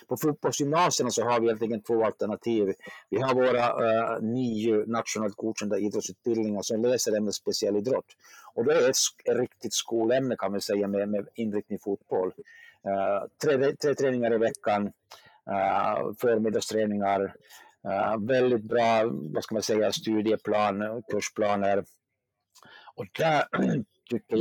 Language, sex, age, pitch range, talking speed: Swedish, male, 50-69, 105-130 Hz, 130 wpm